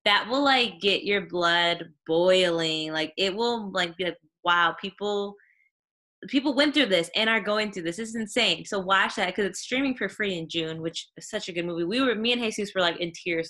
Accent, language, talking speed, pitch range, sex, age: American, English, 230 wpm, 175-220 Hz, female, 20-39